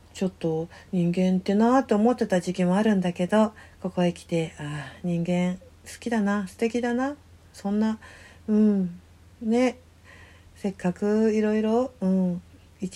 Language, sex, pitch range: Japanese, female, 165-210 Hz